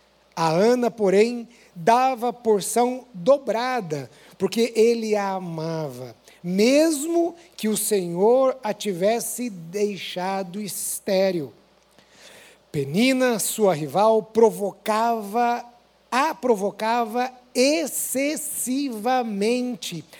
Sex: male